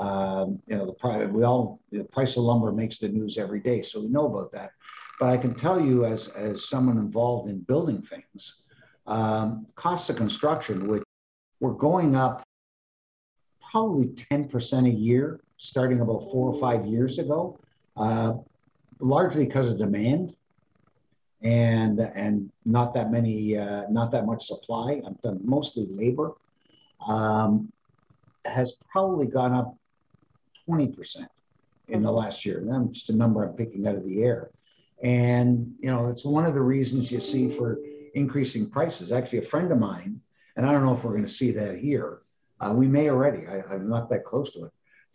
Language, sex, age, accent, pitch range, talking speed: English, male, 60-79, American, 110-135 Hz, 175 wpm